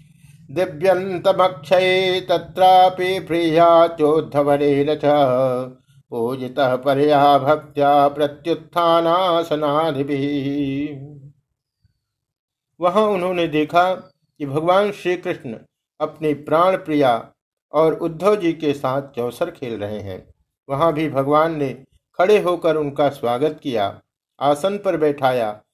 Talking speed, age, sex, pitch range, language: 90 wpm, 60-79, male, 140-170 Hz, Hindi